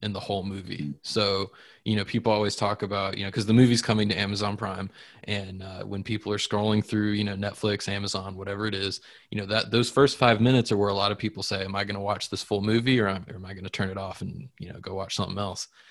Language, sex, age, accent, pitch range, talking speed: English, male, 20-39, American, 95-105 Hz, 270 wpm